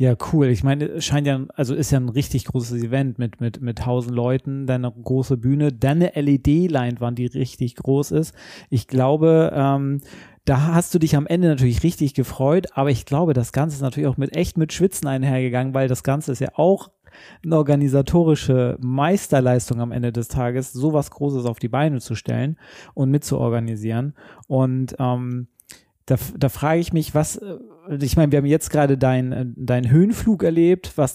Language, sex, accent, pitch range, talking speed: German, male, German, 130-160 Hz, 180 wpm